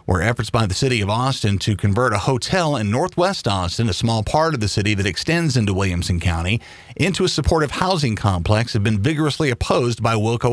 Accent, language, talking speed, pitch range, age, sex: American, English, 205 wpm, 100-135 Hz, 40-59, male